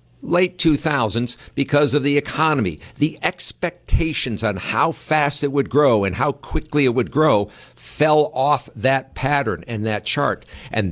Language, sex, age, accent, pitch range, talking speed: English, male, 60-79, American, 110-145 Hz, 155 wpm